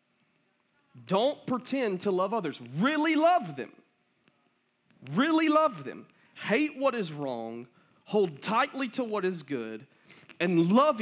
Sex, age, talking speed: male, 40-59, 125 wpm